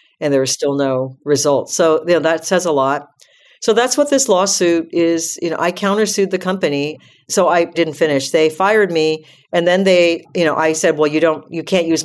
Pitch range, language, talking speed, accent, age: 135-165 Hz, English, 225 wpm, American, 50-69